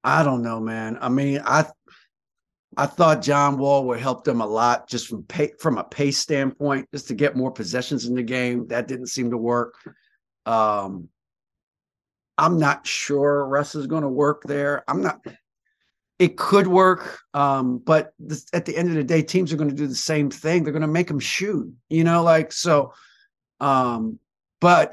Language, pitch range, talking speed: English, 125-165 Hz, 195 wpm